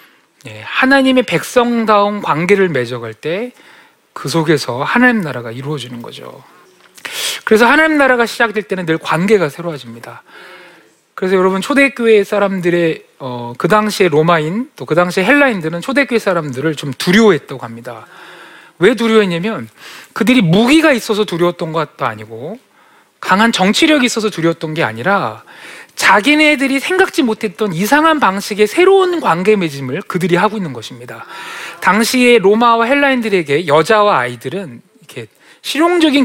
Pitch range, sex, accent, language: 165-260 Hz, male, native, Korean